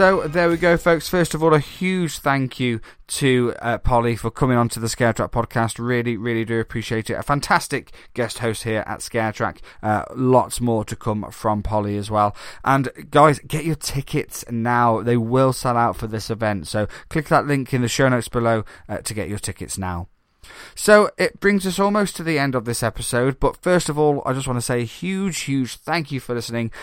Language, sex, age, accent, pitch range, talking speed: English, male, 20-39, British, 110-140 Hz, 220 wpm